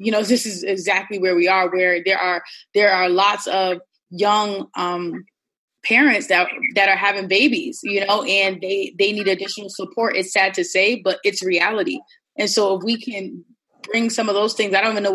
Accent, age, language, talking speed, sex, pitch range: American, 20-39, English, 205 wpm, female, 185-225 Hz